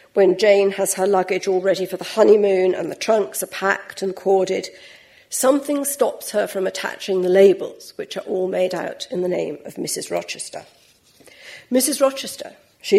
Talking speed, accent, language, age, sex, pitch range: 175 wpm, British, English, 50-69, female, 190-225 Hz